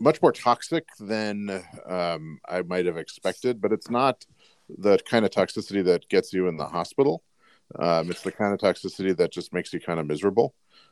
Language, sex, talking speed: English, male, 190 wpm